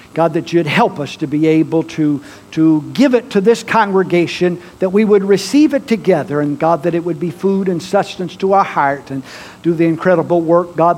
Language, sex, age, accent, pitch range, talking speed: English, male, 60-79, American, 180-260 Hz, 215 wpm